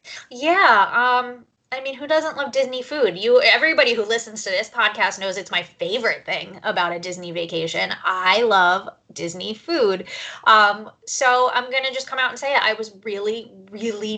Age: 20-39